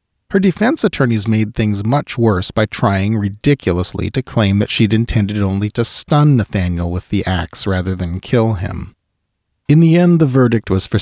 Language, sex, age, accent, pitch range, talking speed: English, male, 40-59, American, 90-115 Hz, 180 wpm